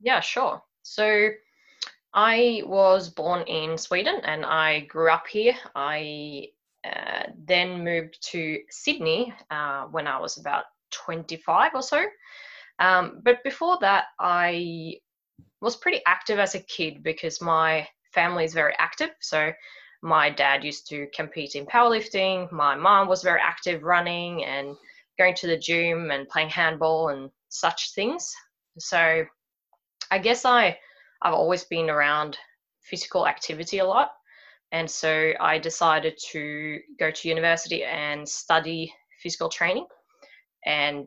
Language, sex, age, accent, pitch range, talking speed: English, female, 20-39, Australian, 155-205 Hz, 135 wpm